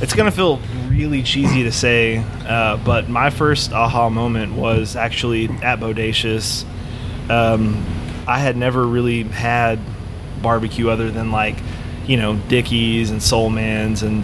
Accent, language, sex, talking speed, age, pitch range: American, English, male, 145 wpm, 20-39, 110-120 Hz